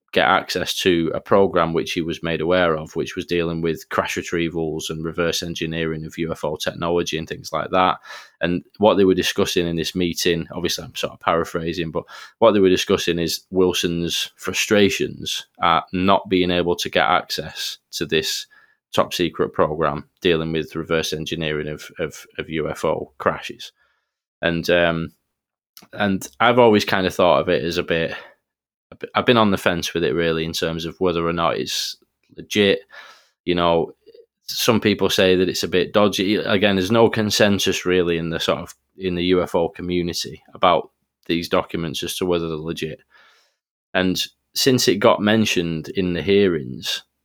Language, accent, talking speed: English, British, 175 wpm